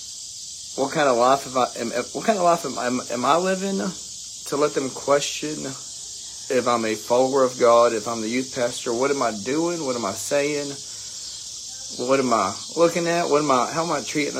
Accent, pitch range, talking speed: American, 110-135 Hz, 215 wpm